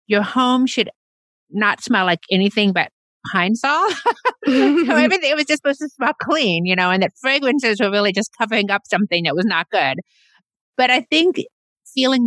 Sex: female